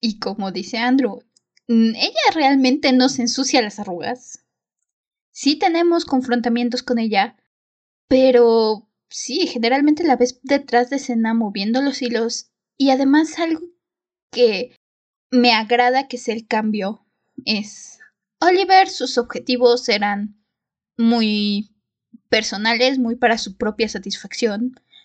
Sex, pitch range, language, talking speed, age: female, 220-265 Hz, Spanish, 115 wpm, 20-39